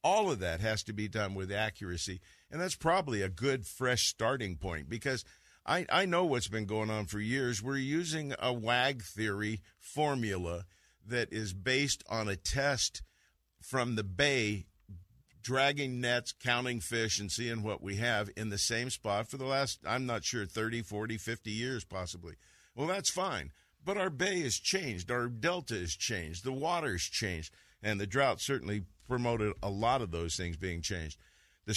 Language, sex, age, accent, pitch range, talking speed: English, male, 50-69, American, 100-135 Hz, 180 wpm